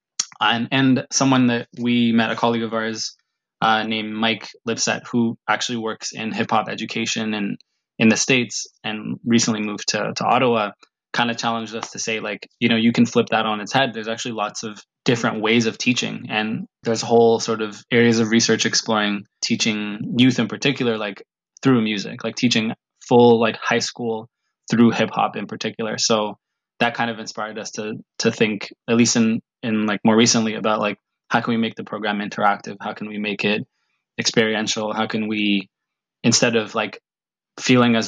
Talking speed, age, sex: 190 wpm, 20-39, male